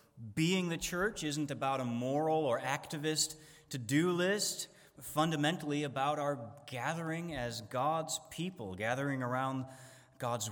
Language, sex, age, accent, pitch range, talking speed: English, male, 30-49, American, 120-150 Hz, 125 wpm